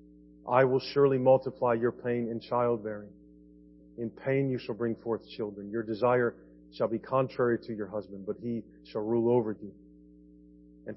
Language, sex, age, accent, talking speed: English, male, 40-59, American, 165 wpm